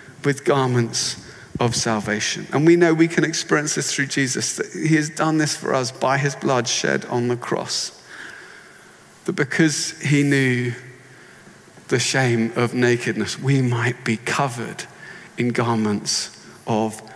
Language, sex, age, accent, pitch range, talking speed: English, male, 40-59, British, 125-175 Hz, 145 wpm